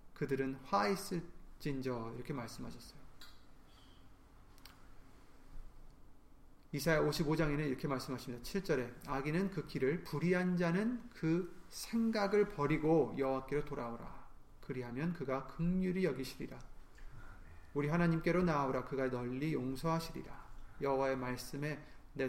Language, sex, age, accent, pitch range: Korean, male, 30-49, native, 120-165 Hz